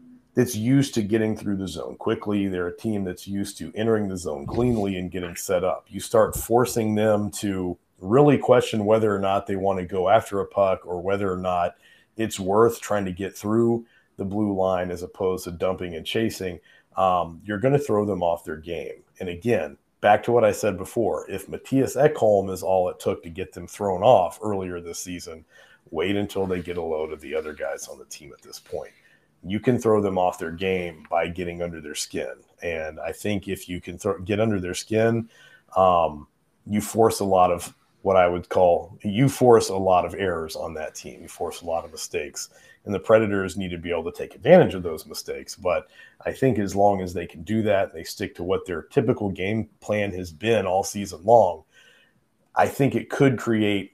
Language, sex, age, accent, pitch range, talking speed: English, male, 40-59, American, 90-115 Hz, 215 wpm